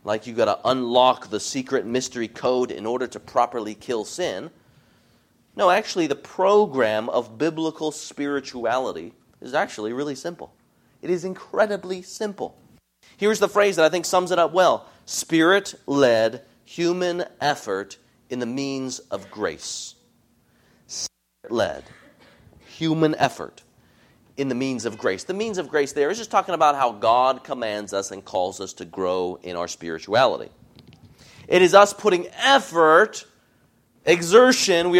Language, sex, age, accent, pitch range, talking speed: English, male, 30-49, American, 120-190 Hz, 145 wpm